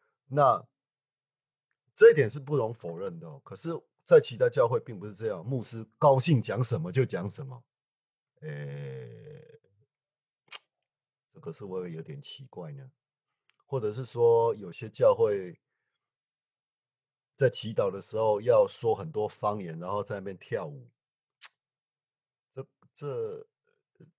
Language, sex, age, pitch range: Chinese, male, 50-69, 125-210 Hz